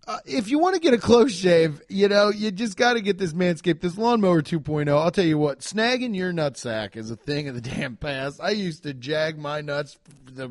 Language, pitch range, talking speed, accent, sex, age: English, 160-250 Hz, 240 wpm, American, male, 30-49